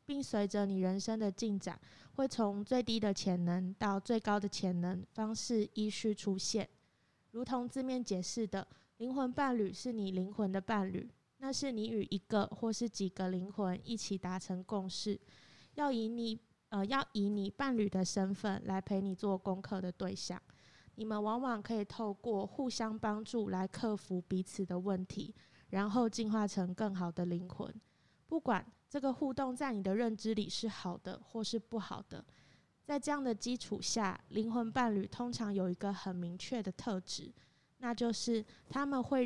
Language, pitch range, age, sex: Chinese, 190-230 Hz, 20-39, female